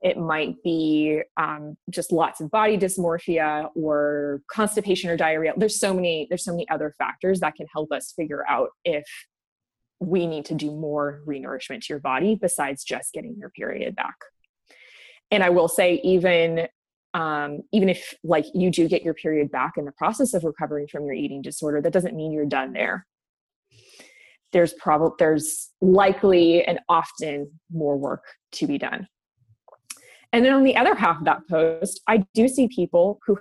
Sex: female